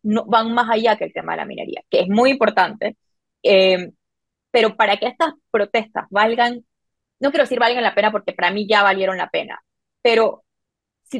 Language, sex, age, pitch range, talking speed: Spanish, female, 20-39, 190-245 Hz, 195 wpm